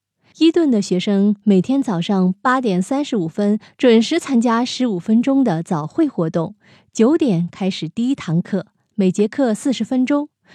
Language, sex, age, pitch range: Chinese, female, 20-39, 180-255 Hz